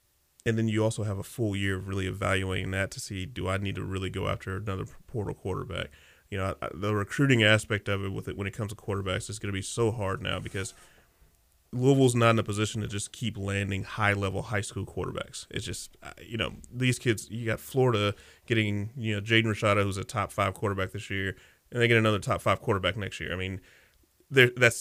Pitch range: 95-110 Hz